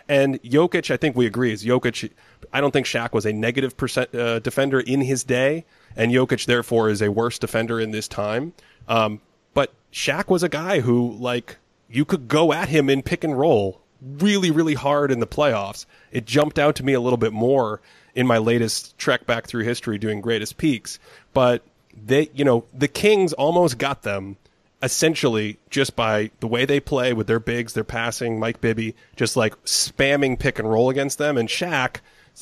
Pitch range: 115-150 Hz